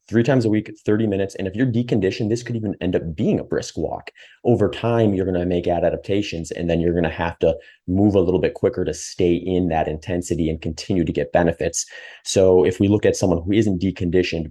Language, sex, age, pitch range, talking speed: English, male, 30-49, 85-95 Hz, 235 wpm